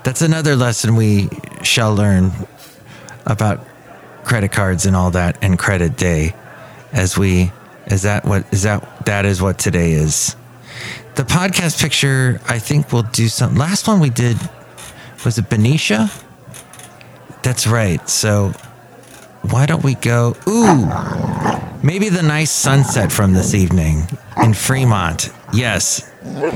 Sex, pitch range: male, 100-140 Hz